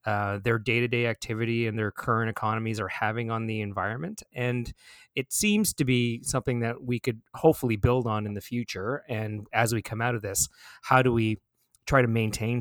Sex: male